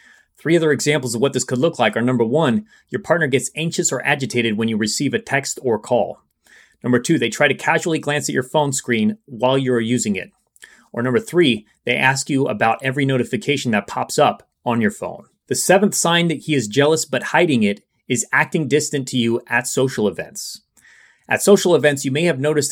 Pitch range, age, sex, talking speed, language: 120-150 Hz, 30-49, male, 210 wpm, English